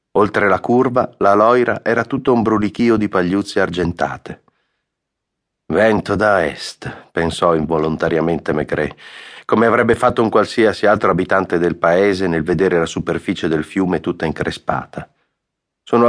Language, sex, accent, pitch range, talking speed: Italian, male, native, 90-115 Hz, 135 wpm